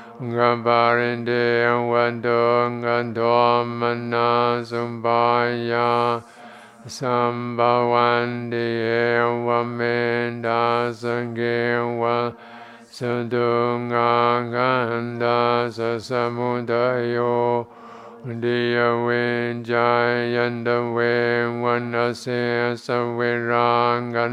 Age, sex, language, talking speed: 50-69, male, English, 40 wpm